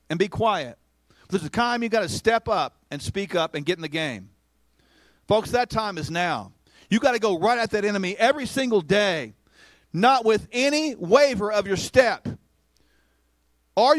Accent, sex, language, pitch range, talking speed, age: American, male, English, 185-255 Hz, 195 wpm, 40-59